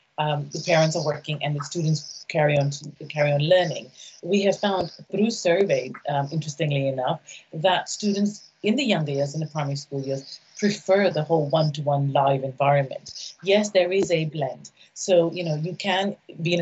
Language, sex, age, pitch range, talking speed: English, female, 30-49, 145-175 Hz, 185 wpm